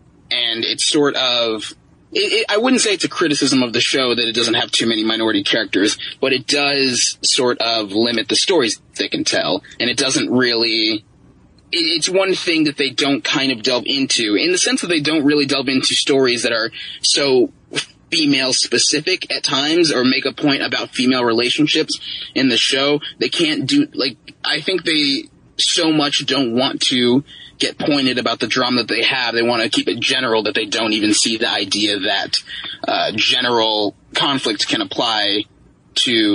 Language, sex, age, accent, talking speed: English, male, 20-39, American, 185 wpm